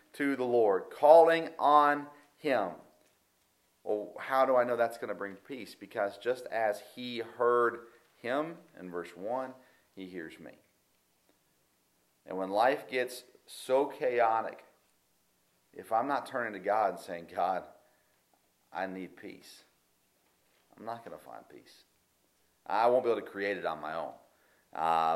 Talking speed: 150 wpm